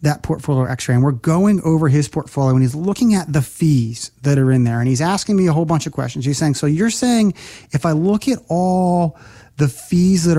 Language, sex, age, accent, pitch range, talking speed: English, male, 30-49, American, 130-185 Hz, 235 wpm